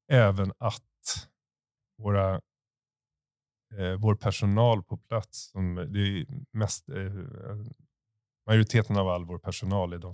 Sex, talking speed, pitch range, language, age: male, 120 wpm, 95-115 Hz, Swedish, 30-49